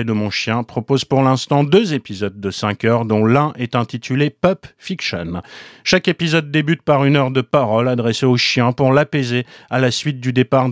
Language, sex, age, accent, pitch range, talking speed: French, male, 30-49, French, 125-175 Hz, 195 wpm